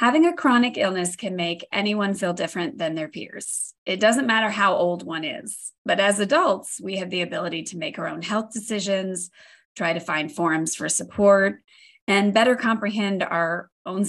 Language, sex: English, female